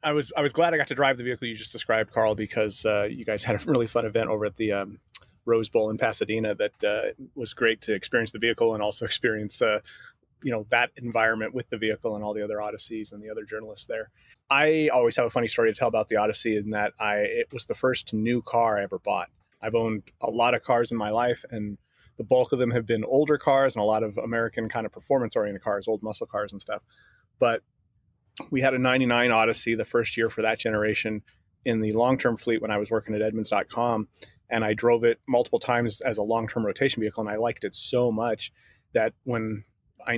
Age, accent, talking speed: 30-49, American, 240 wpm